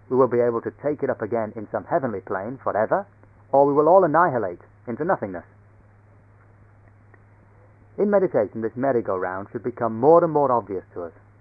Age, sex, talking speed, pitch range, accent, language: 30-49, male, 175 wpm, 105-135 Hz, British, English